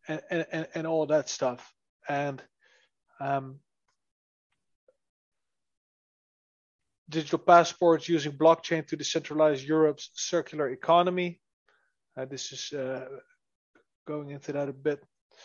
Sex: male